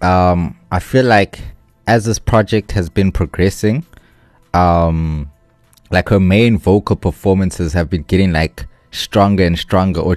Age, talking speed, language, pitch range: 20-39, 140 wpm, English, 85-95 Hz